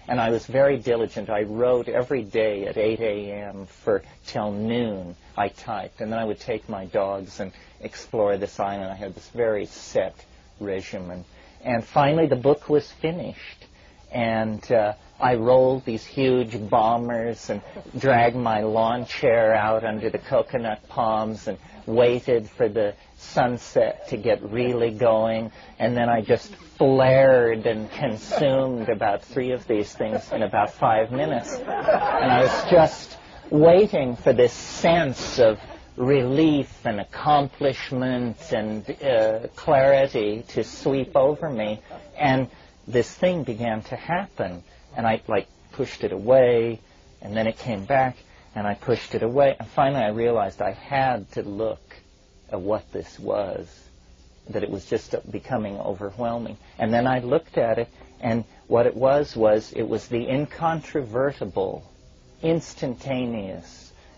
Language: English